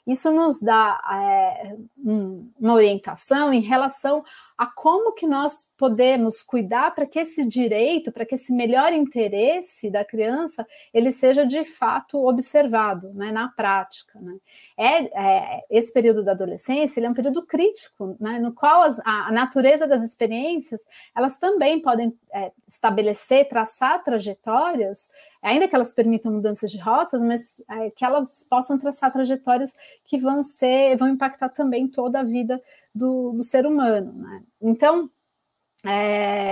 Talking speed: 150 wpm